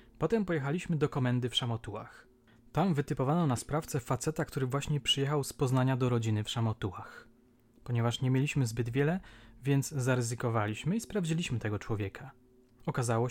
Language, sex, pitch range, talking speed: Polish, male, 120-150 Hz, 145 wpm